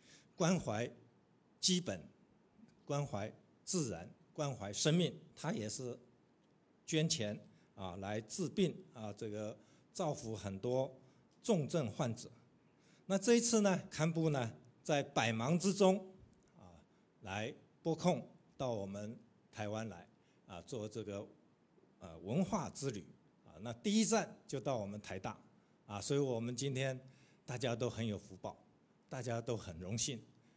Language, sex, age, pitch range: English, male, 60-79, 110-155 Hz